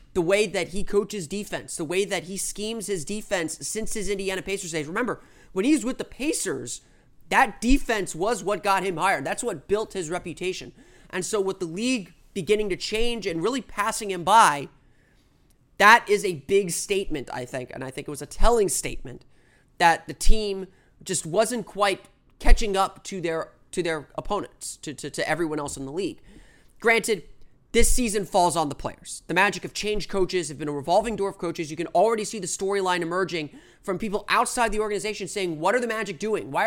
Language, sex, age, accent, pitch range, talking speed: English, male, 30-49, American, 165-210 Hz, 205 wpm